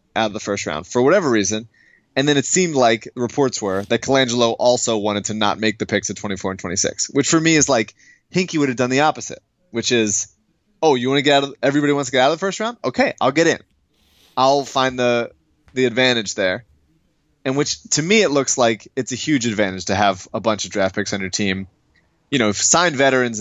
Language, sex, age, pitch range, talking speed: English, male, 20-39, 105-135 Hz, 235 wpm